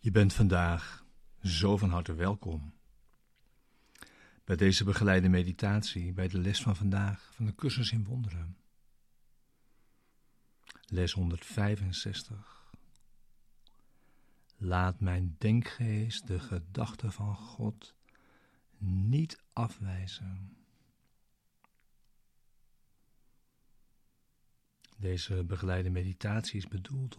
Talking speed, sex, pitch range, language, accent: 80 wpm, male, 95-110 Hz, Dutch, Dutch